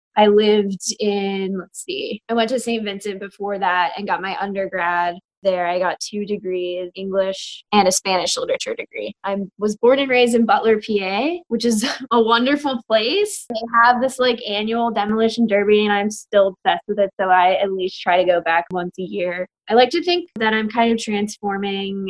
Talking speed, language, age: 200 wpm, English, 10-29